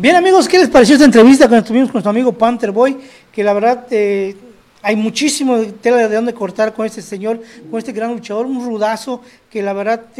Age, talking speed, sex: 40-59, 210 wpm, male